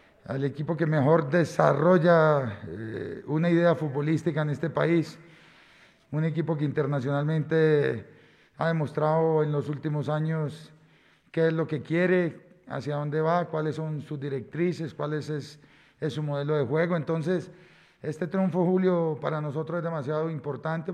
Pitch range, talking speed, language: 150-175 Hz, 145 wpm, Spanish